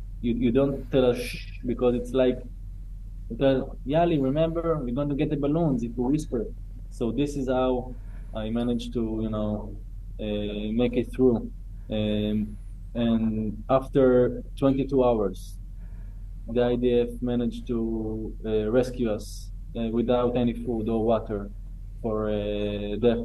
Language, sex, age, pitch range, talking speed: English, male, 20-39, 105-120 Hz, 145 wpm